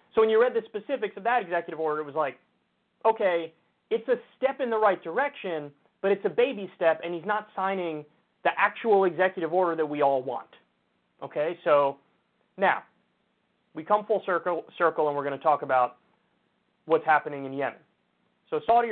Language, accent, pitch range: English, American, 150-210 Hz